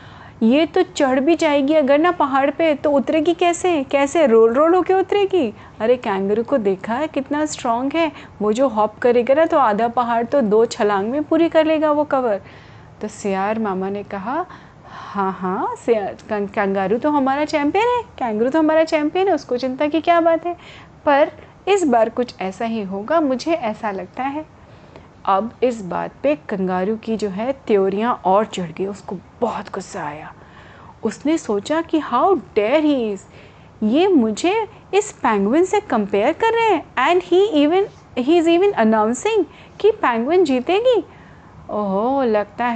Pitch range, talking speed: 215-315 Hz, 165 wpm